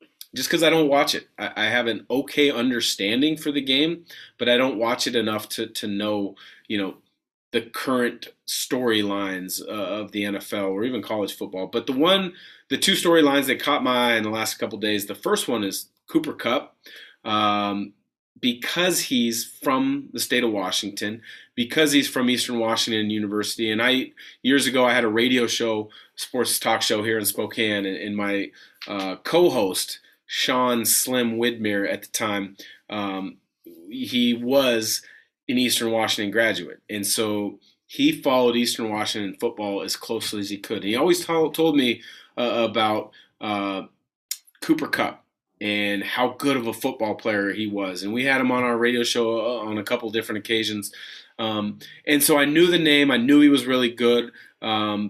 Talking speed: 180 wpm